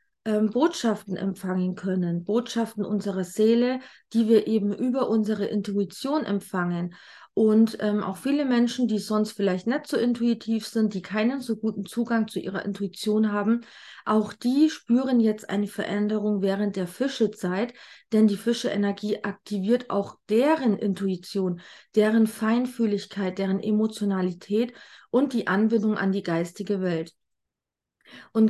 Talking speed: 135 wpm